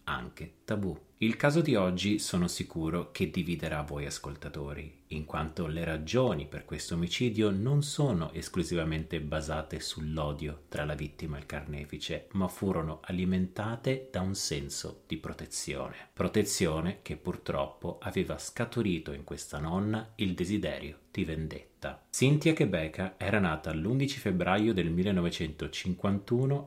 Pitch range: 80-110 Hz